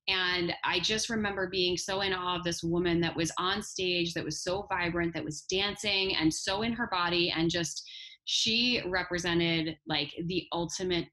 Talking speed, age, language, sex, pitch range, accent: 185 wpm, 20-39, English, female, 165-190 Hz, American